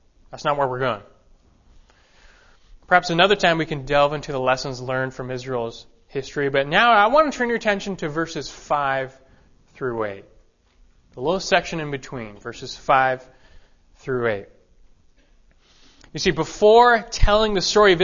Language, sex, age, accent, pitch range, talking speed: English, male, 20-39, American, 125-190 Hz, 155 wpm